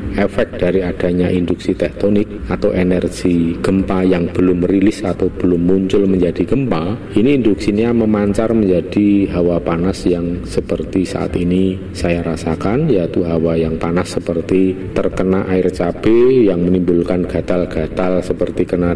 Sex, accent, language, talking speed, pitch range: male, native, Indonesian, 130 wpm, 85-105 Hz